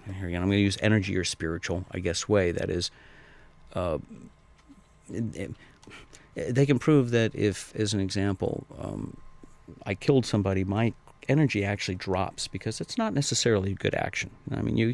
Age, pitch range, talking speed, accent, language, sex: 50-69, 100-135 Hz, 180 wpm, American, English, male